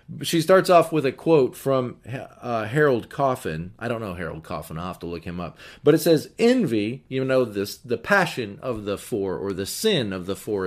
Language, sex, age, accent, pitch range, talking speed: English, male, 40-59, American, 110-150 Hz, 220 wpm